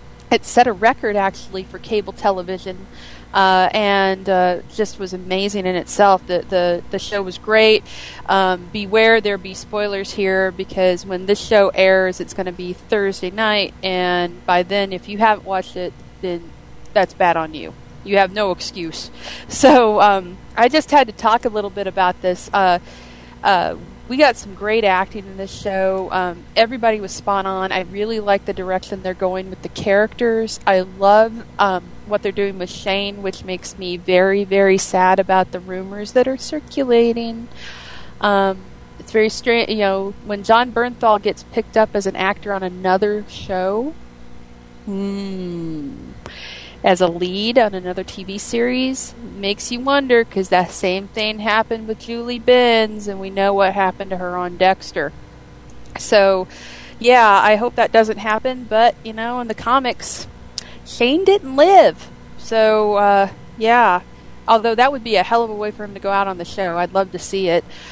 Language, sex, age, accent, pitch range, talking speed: English, female, 30-49, American, 185-220 Hz, 175 wpm